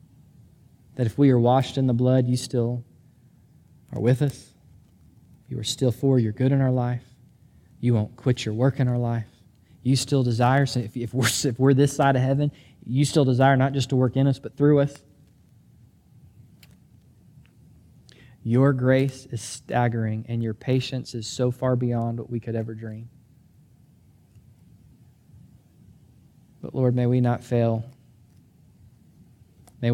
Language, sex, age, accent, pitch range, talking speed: English, male, 20-39, American, 115-130 Hz, 150 wpm